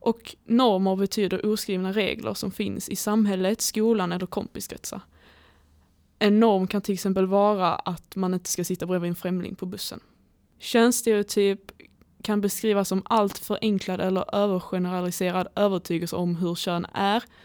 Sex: female